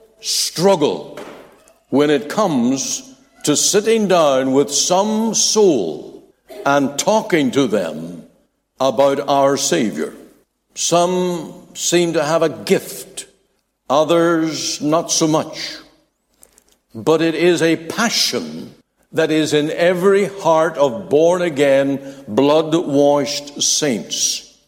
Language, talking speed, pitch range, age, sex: English, 105 wpm, 165-205 Hz, 60-79, male